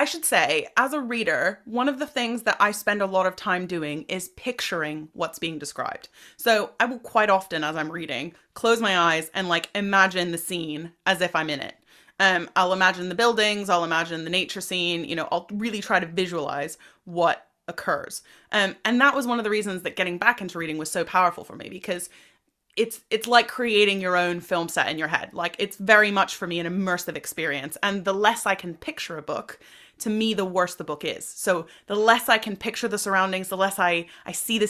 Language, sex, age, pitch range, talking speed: English, female, 30-49, 175-215 Hz, 225 wpm